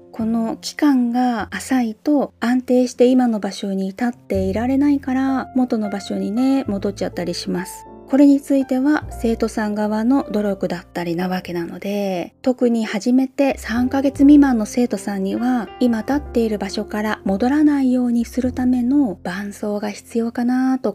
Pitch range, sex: 205-260 Hz, female